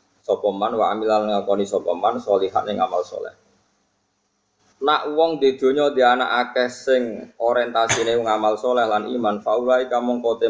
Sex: male